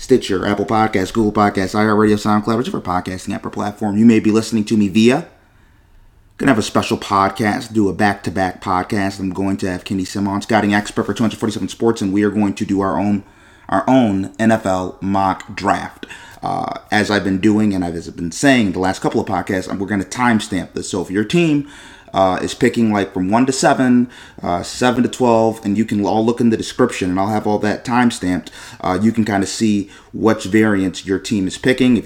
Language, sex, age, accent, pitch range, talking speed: English, male, 30-49, American, 95-120 Hz, 225 wpm